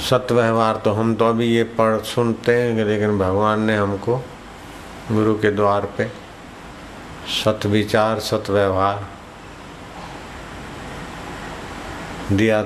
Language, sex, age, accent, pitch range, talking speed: Hindi, male, 60-79, native, 95-110 Hz, 105 wpm